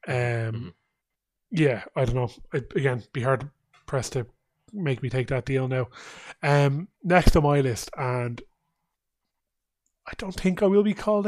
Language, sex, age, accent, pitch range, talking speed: English, male, 30-49, Irish, 130-160 Hz, 165 wpm